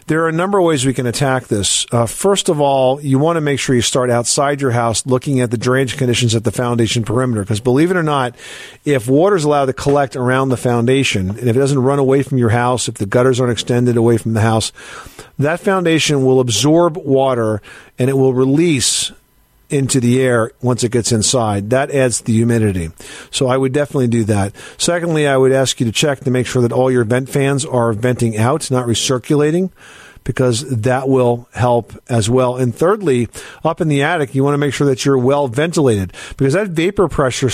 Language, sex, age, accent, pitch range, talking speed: English, male, 50-69, American, 115-140 Hz, 215 wpm